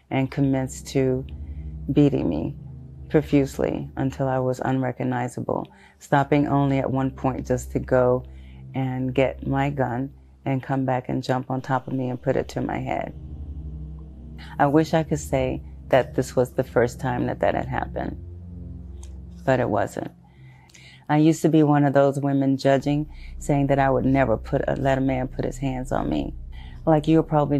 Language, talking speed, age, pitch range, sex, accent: English, 180 wpm, 30-49, 85-140 Hz, female, American